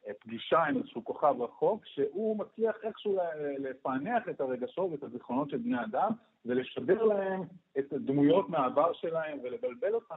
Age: 50-69